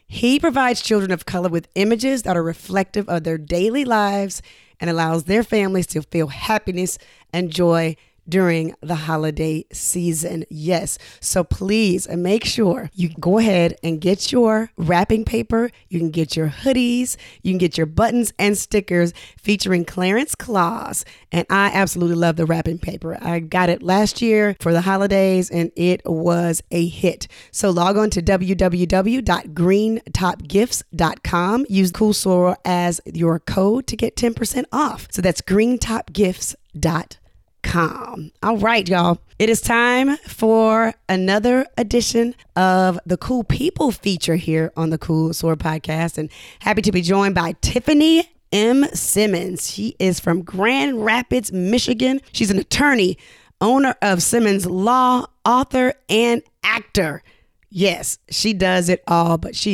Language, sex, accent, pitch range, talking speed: English, female, American, 170-225 Hz, 145 wpm